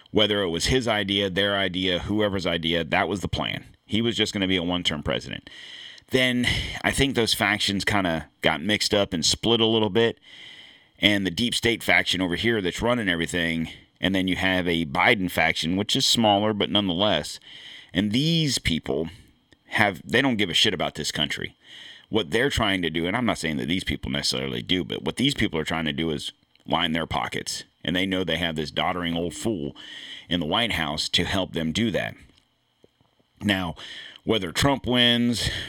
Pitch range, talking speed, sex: 90-115 Hz, 200 wpm, male